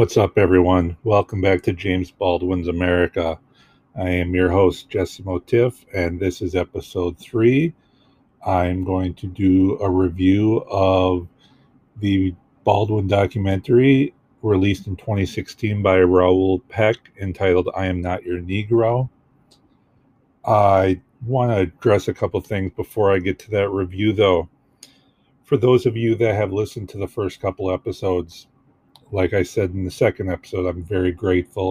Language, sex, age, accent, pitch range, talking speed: English, male, 40-59, American, 90-110 Hz, 150 wpm